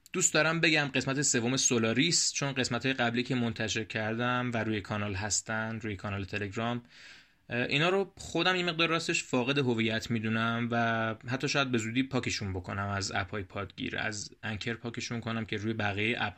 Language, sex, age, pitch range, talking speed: Persian, male, 20-39, 100-130 Hz, 175 wpm